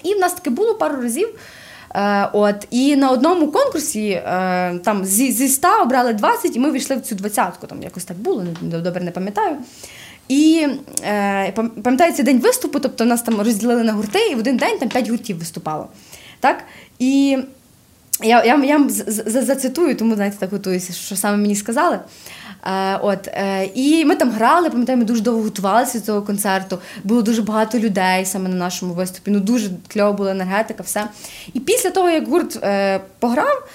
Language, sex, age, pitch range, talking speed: Ukrainian, female, 20-39, 200-280 Hz, 175 wpm